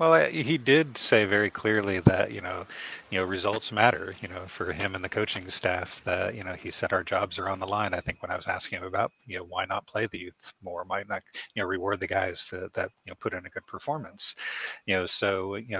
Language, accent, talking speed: English, American, 255 wpm